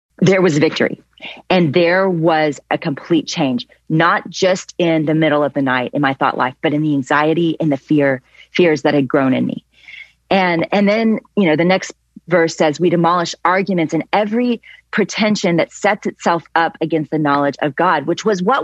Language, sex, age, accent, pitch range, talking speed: English, female, 30-49, American, 150-195 Hz, 195 wpm